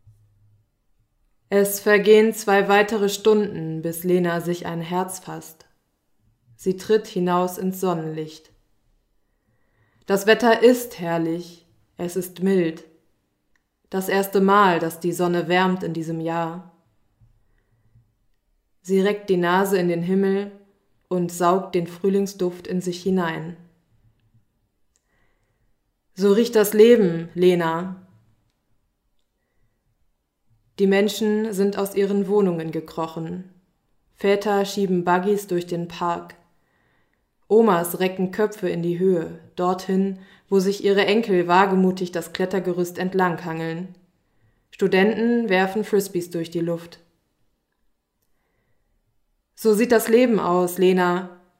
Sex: female